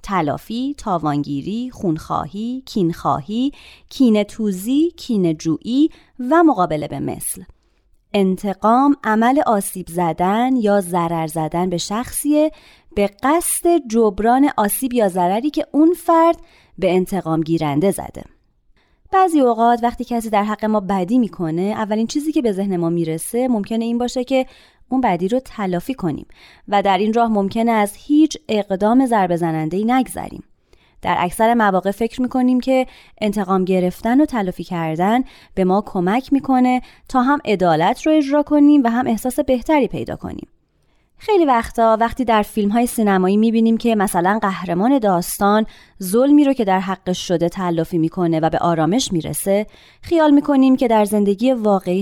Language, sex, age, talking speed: Persian, female, 30-49, 145 wpm